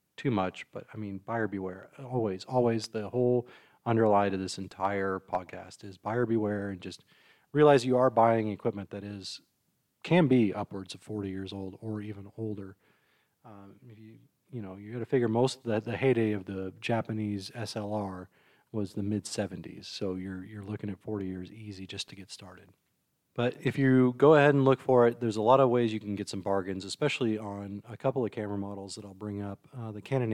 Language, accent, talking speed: English, American, 205 wpm